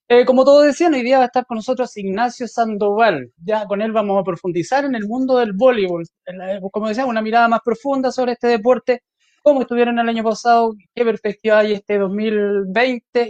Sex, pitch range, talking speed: male, 195-250 Hz, 195 wpm